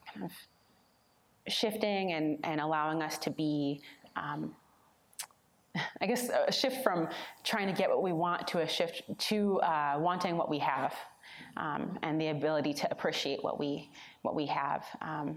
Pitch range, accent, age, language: 150-185 Hz, American, 30-49, English